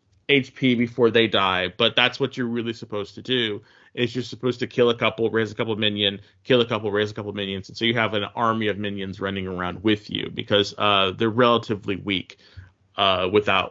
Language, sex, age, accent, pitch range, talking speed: English, male, 30-49, American, 100-120 Hz, 220 wpm